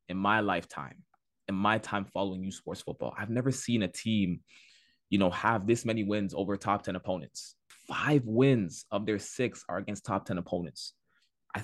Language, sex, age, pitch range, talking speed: English, male, 20-39, 95-120 Hz, 185 wpm